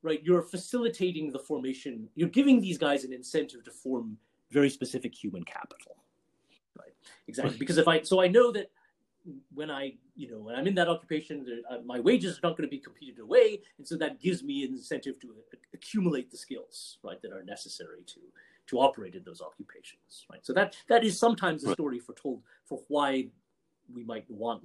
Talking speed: 195 wpm